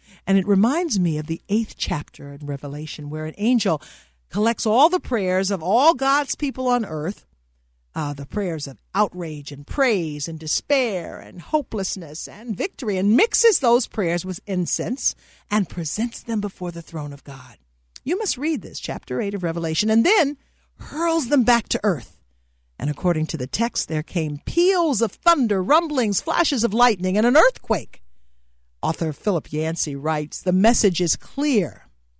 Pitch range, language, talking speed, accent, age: 145-240 Hz, English, 170 wpm, American, 50-69